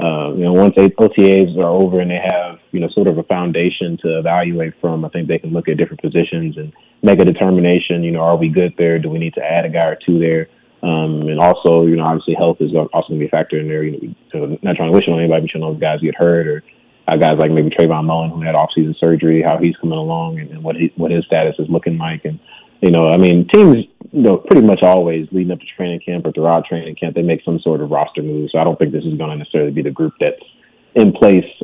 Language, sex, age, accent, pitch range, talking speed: English, male, 30-49, American, 80-90 Hz, 275 wpm